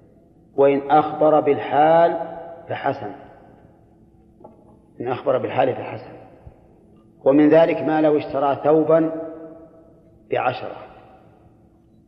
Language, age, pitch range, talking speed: Arabic, 40-59, 130-160 Hz, 75 wpm